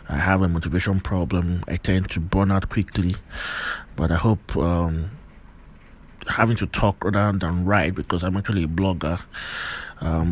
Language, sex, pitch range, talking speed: English, male, 90-105 Hz, 155 wpm